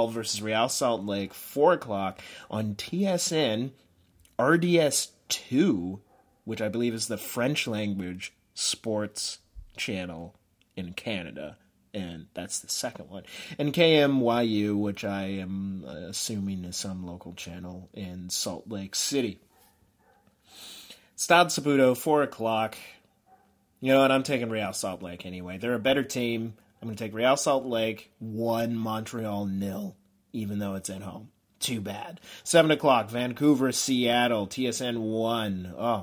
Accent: American